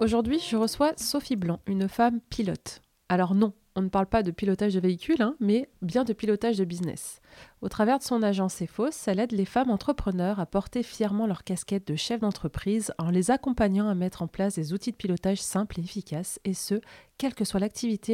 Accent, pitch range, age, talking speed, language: French, 190-235 Hz, 30-49, 210 wpm, French